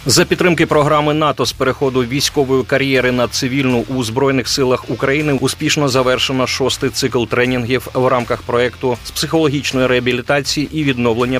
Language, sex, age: Ukrainian, male, 30-49